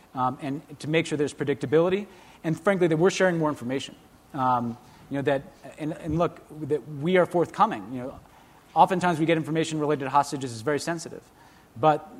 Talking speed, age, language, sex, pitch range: 185 wpm, 30-49, English, male, 130-155 Hz